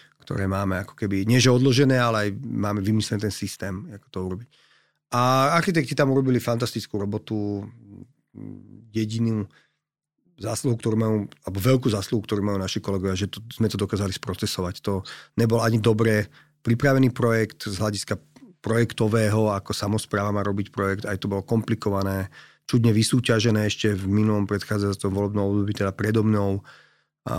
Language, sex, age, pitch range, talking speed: Slovak, male, 30-49, 100-125 Hz, 150 wpm